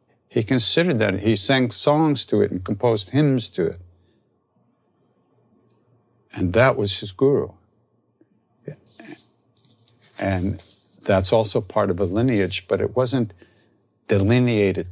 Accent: American